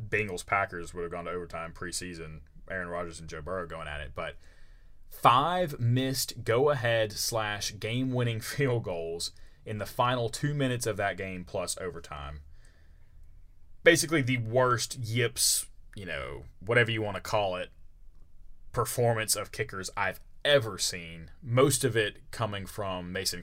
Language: English